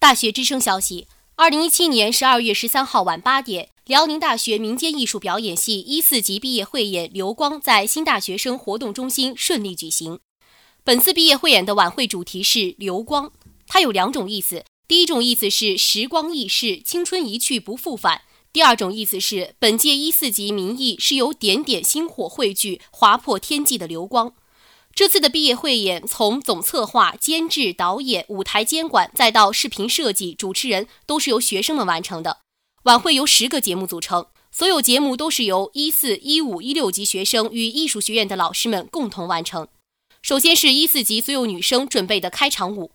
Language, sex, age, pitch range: Chinese, female, 20-39, 195-290 Hz